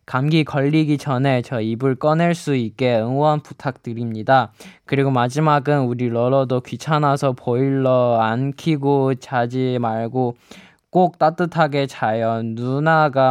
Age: 20-39